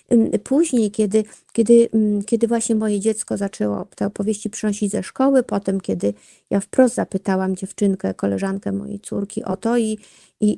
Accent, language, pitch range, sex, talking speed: native, Polish, 205-235 Hz, female, 150 wpm